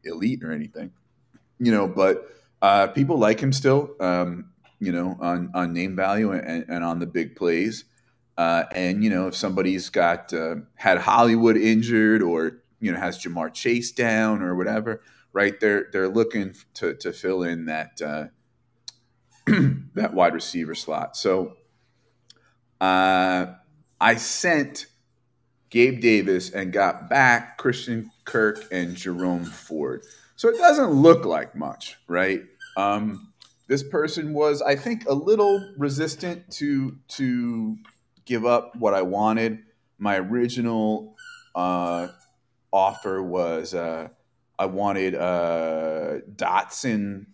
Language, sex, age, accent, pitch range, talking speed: English, male, 30-49, American, 90-120 Hz, 135 wpm